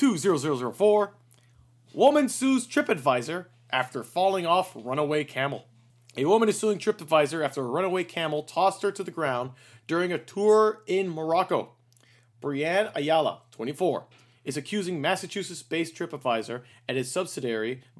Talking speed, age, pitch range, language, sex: 125 wpm, 30-49, 120-185 Hz, English, male